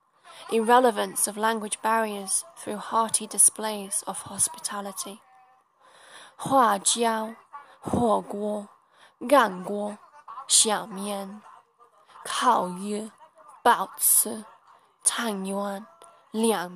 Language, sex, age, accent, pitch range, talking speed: English, female, 10-29, British, 205-260 Hz, 80 wpm